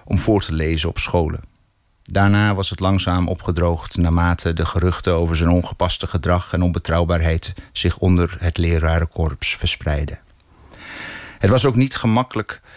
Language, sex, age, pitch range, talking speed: Dutch, male, 50-69, 90-105 Hz, 140 wpm